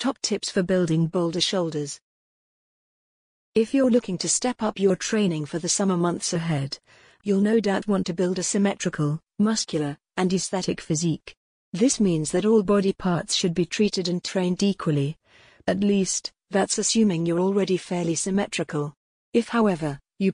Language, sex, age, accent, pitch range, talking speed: English, female, 40-59, British, 170-210 Hz, 160 wpm